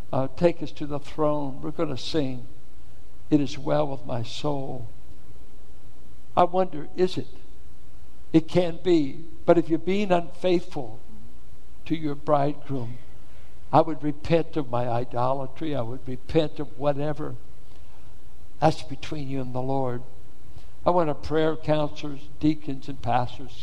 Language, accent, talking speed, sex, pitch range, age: English, American, 140 wpm, male, 130-160 Hz, 60-79